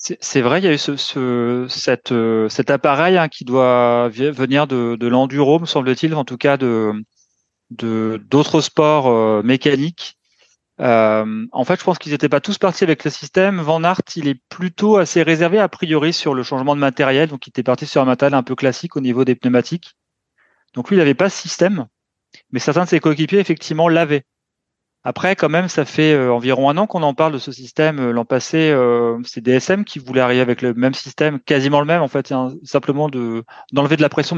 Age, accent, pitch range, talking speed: 30-49, French, 125-160 Hz, 215 wpm